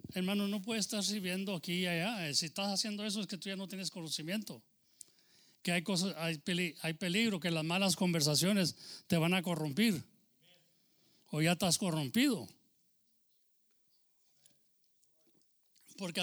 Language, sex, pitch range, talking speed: English, male, 165-210 Hz, 135 wpm